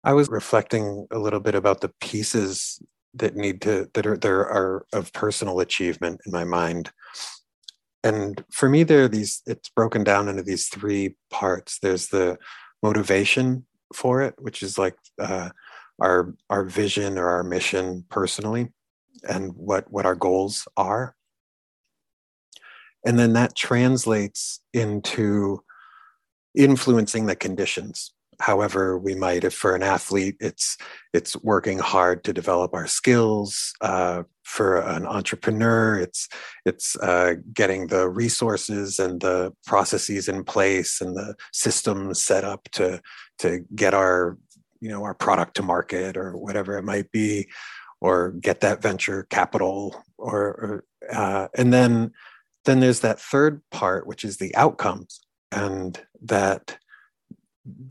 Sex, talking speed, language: male, 140 wpm, English